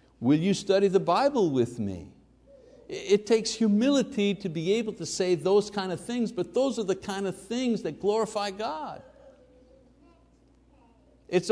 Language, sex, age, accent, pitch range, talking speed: English, male, 60-79, American, 125-210 Hz, 155 wpm